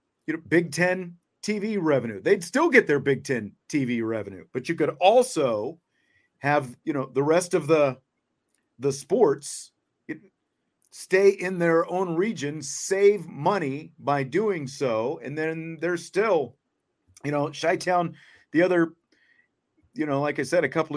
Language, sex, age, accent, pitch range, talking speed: English, male, 40-59, American, 135-175 Hz, 145 wpm